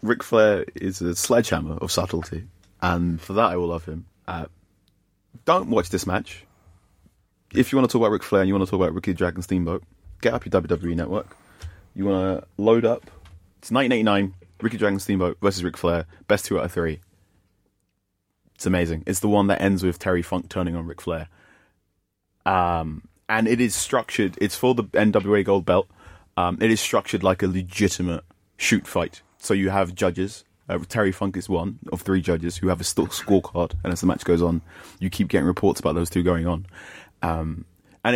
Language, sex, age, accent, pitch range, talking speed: English, male, 30-49, British, 85-100 Hz, 200 wpm